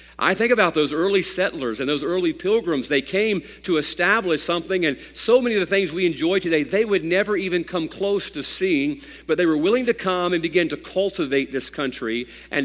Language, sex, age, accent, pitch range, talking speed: English, male, 50-69, American, 135-185 Hz, 215 wpm